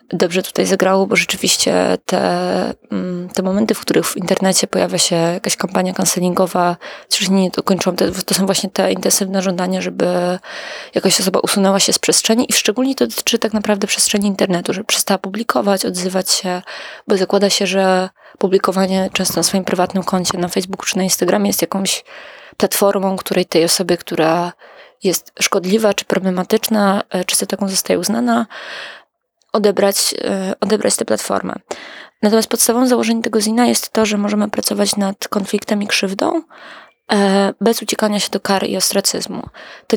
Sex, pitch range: female, 185-215 Hz